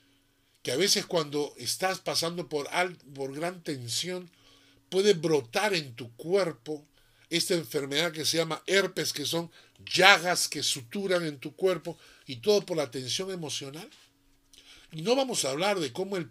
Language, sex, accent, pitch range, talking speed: Spanish, male, American, 125-175 Hz, 160 wpm